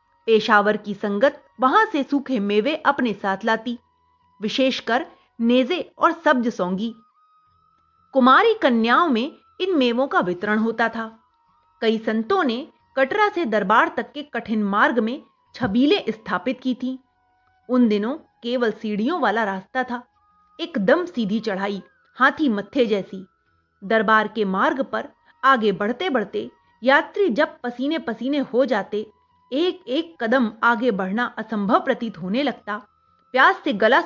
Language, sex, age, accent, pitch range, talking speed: Hindi, female, 30-49, native, 215-305 Hz, 135 wpm